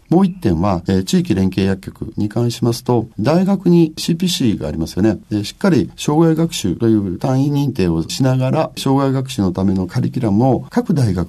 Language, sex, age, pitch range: Japanese, male, 50-69, 105-175 Hz